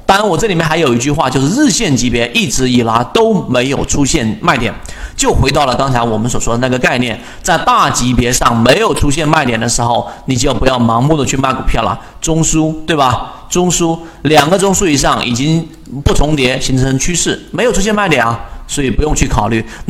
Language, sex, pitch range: Chinese, male, 120-165 Hz